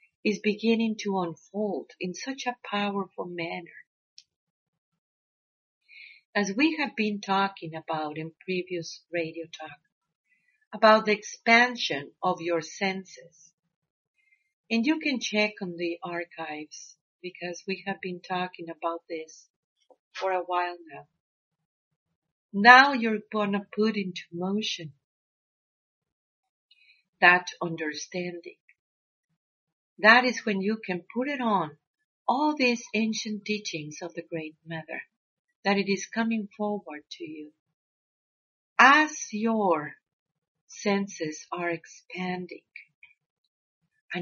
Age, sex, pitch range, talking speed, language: 50-69, female, 170-225 Hz, 110 wpm, English